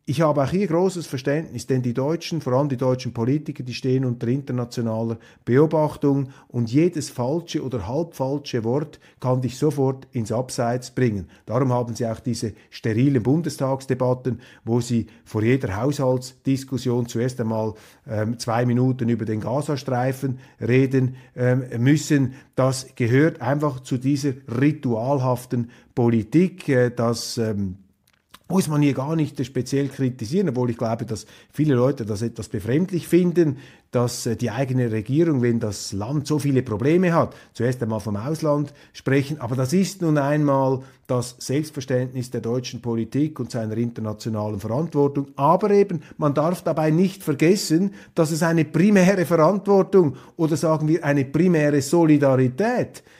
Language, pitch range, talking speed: German, 120-150 Hz, 145 wpm